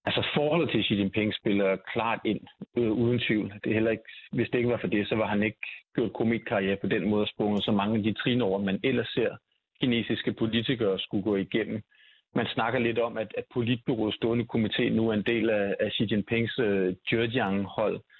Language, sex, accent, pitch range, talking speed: Danish, male, native, 100-120 Hz, 215 wpm